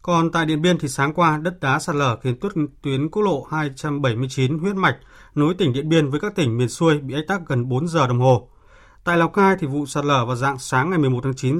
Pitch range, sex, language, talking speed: 125-160 Hz, male, Vietnamese, 260 wpm